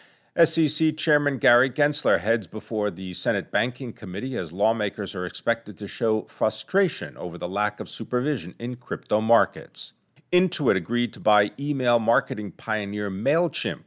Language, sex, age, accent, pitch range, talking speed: English, male, 50-69, American, 95-125 Hz, 145 wpm